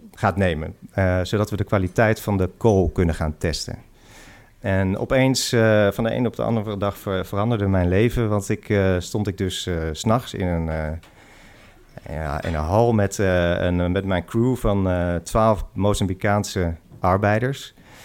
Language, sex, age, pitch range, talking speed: Dutch, male, 40-59, 95-115 Hz, 175 wpm